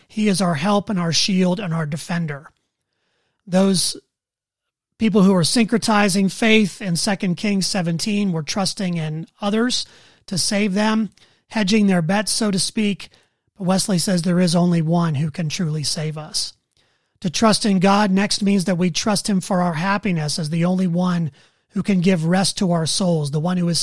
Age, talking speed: 30-49, 185 wpm